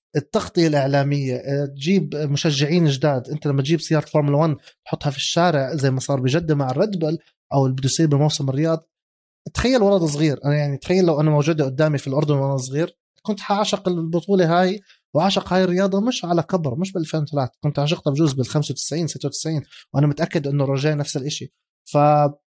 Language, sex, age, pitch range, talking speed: Arabic, male, 20-39, 140-175 Hz, 175 wpm